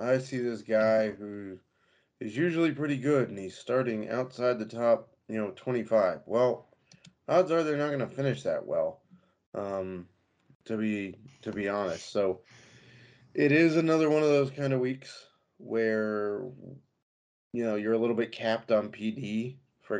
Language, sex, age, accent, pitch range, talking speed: English, male, 20-39, American, 95-125 Hz, 165 wpm